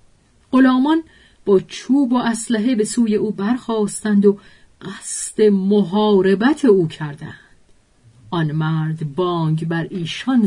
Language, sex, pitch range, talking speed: Persian, female, 155-210 Hz, 110 wpm